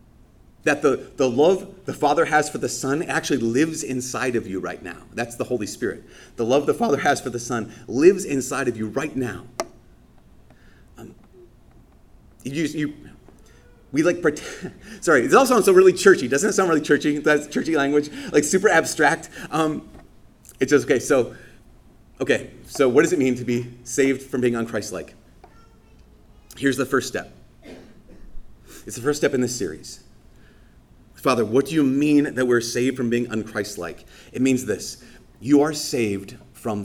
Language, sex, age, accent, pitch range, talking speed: English, male, 30-49, American, 110-150 Hz, 175 wpm